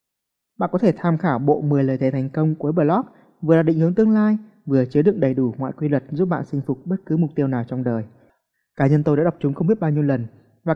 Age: 20-39